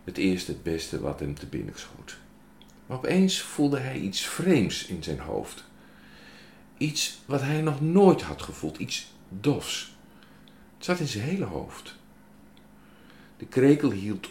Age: 50-69